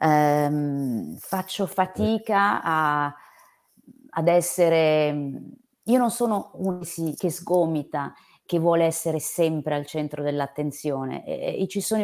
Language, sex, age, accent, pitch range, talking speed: Italian, female, 30-49, native, 145-185 Hz, 120 wpm